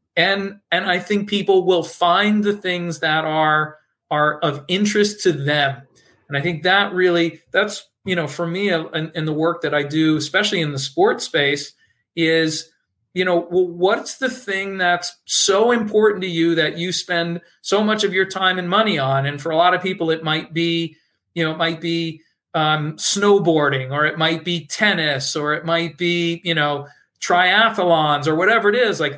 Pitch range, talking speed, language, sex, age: 165-200 Hz, 190 wpm, English, male, 40-59